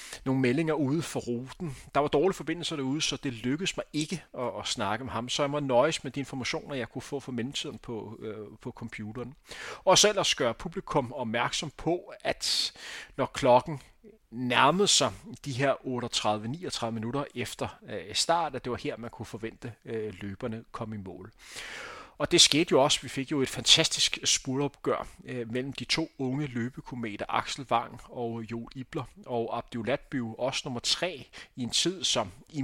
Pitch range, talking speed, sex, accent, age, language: 115-145 Hz, 180 wpm, male, native, 30-49, Danish